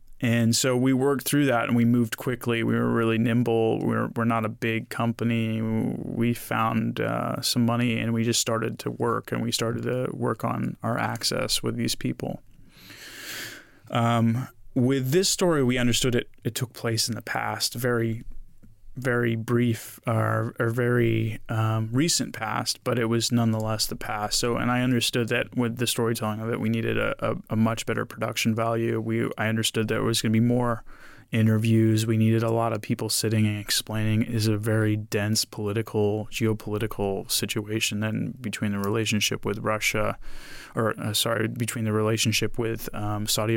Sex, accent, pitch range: male, American, 110-115 Hz